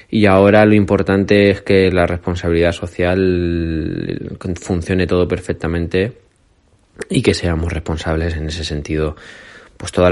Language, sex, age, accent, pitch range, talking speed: Spanish, male, 20-39, Spanish, 80-95 Hz, 125 wpm